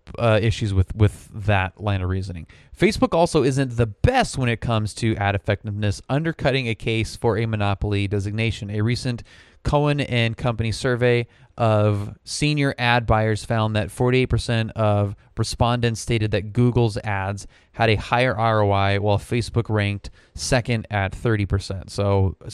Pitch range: 100-120 Hz